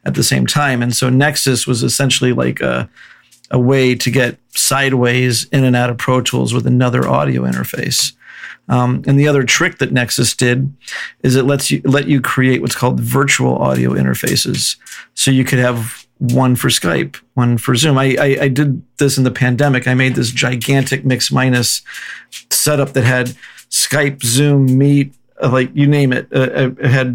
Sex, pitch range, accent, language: male, 125-140 Hz, American, English